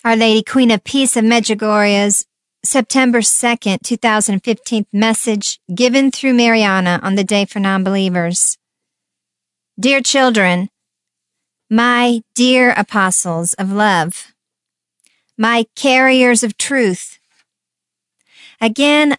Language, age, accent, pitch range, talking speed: English, 50-69, American, 195-250 Hz, 100 wpm